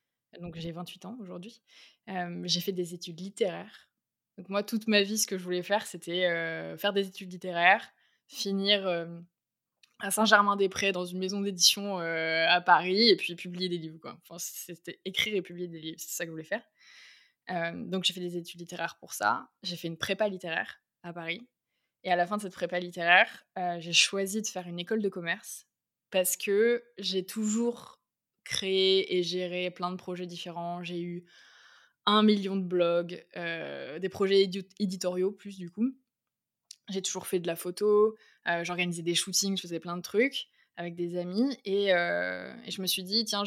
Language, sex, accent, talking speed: French, female, French, 195 wpm